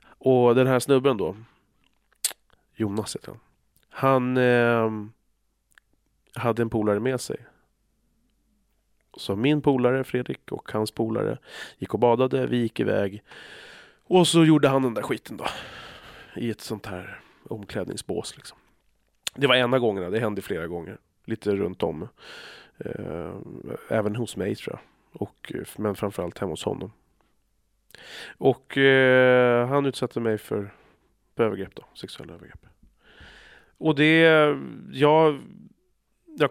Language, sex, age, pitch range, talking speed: Swedish, male, 30-49, 100-130 Hz, 130 wpm